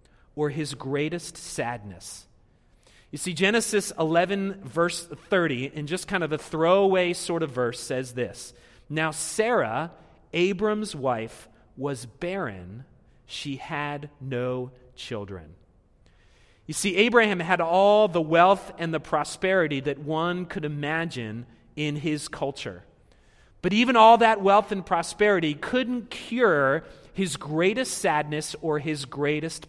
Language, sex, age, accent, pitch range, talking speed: English, male, 30-49, American, 130-185 Hz, 125 wpm